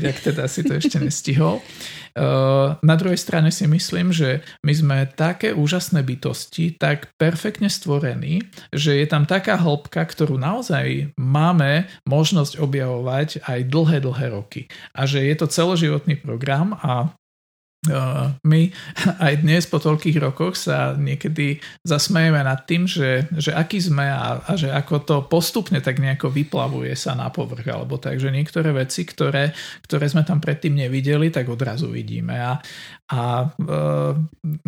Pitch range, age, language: 135-160 Hz, 50-69, Slovak